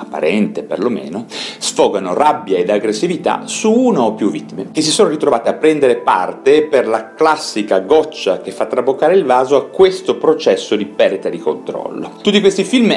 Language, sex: Italian, male